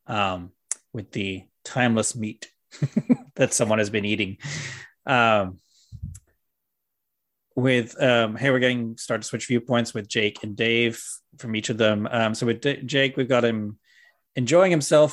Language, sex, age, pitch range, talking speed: English, male, 30-49, 105-125 Hz, 150 wpm